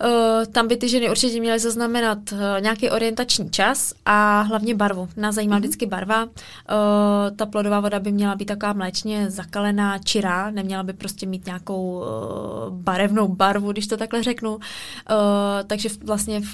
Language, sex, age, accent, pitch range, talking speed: Czech, female, 20-39, native, 195-215 Hz, 160 wpm